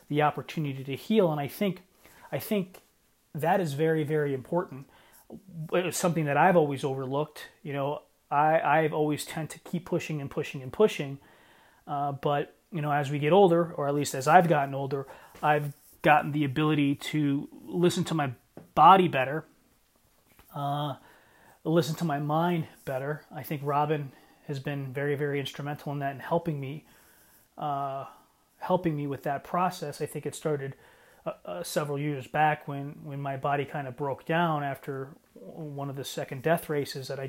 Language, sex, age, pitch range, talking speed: English, male, 30-49, 140-165 Hz, 175 wpm